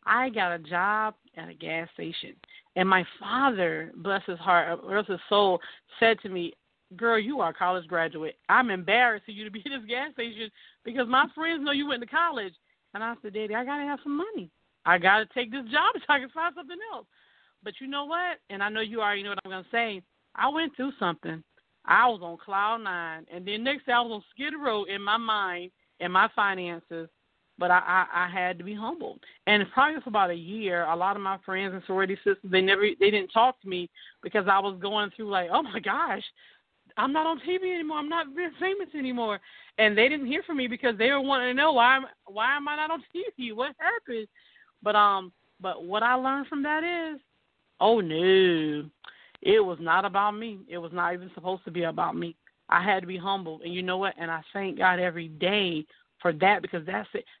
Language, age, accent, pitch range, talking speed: English, 40-59, American, 185-265 Hz, 230 wpm